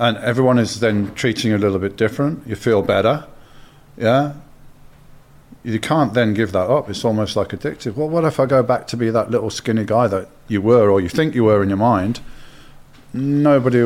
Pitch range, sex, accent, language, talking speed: 110-140 Hz, male, British, English, 210 wpm